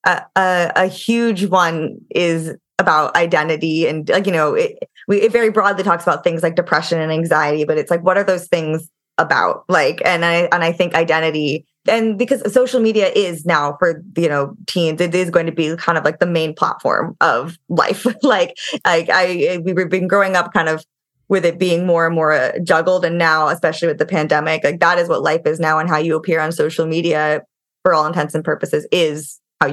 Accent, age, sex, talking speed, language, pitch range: American, 20-39, female, 210 wpm, English, 155-185 Hz